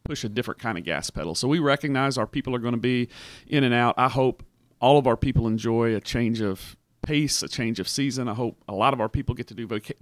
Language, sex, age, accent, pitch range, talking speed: English, male, 40-59, American, 115-130 Hz, 270 wpm